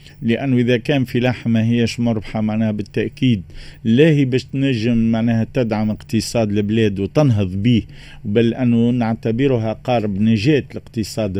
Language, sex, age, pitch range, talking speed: Arabic, male, 50-69, 110-130 Hz, 130 wpm